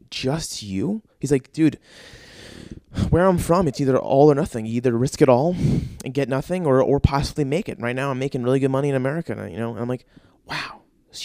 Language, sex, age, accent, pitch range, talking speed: English, male, 20-39, American, 130-190 Hz, 220 wpm